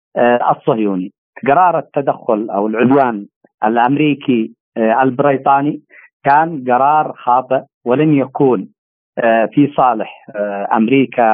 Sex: male